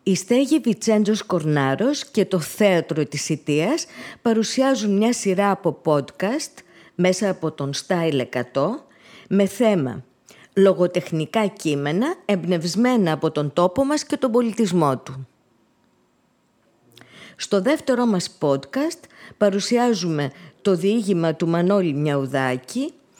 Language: Greek